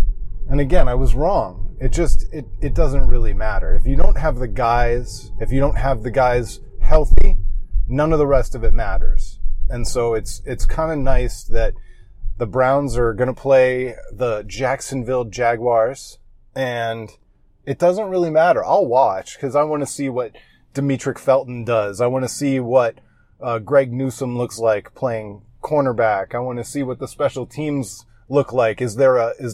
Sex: male